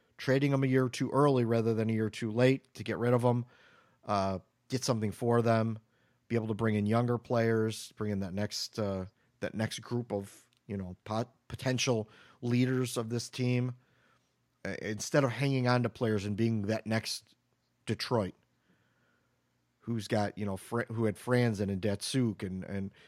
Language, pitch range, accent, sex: English, 105-130 Hz, American, male